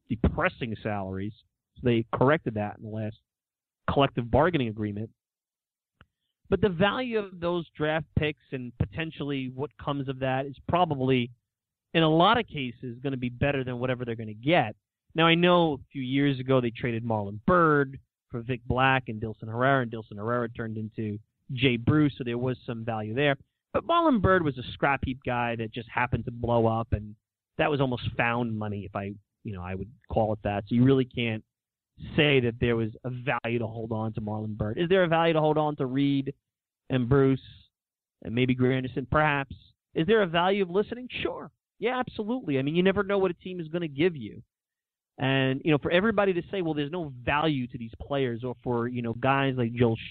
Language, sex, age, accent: English, male, 30-49, American